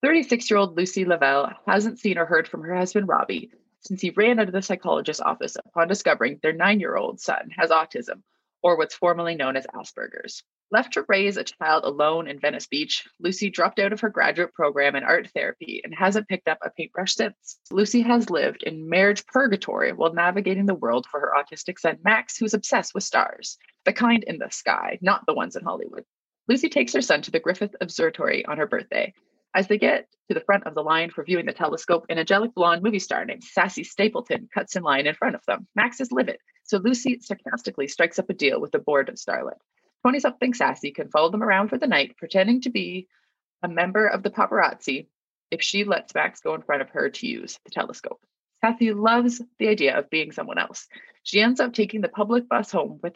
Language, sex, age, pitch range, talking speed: English, female, 20-39, 175-240 Hz, 210 wpm